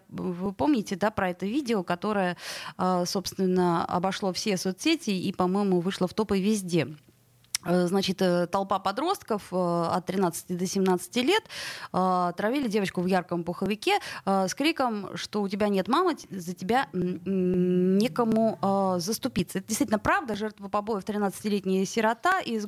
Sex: female